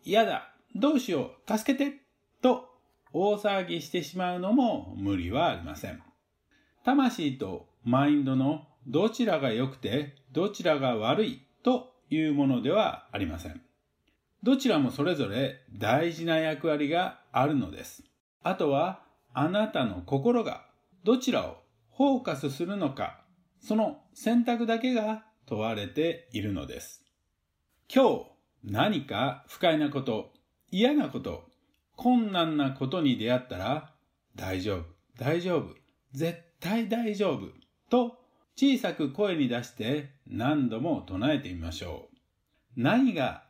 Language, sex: Japanese, male